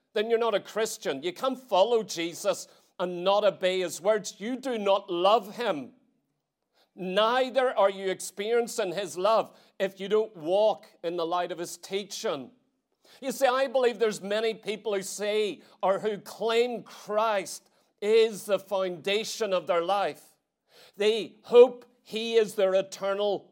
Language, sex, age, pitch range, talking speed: English, male, 40-59, 190-230 Hz, 155 wpm